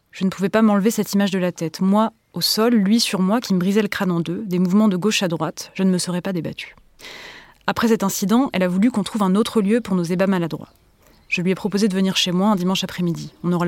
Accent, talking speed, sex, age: French, 275 wpm, female, 20-39